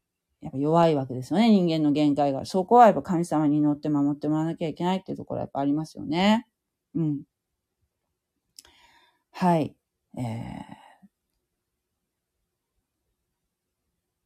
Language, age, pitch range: Japanese, 40-59, 150-230 Hz